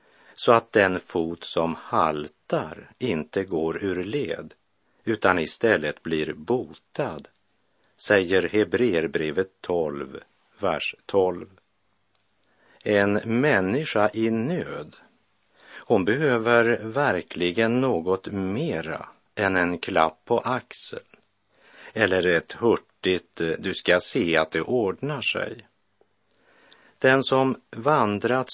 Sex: male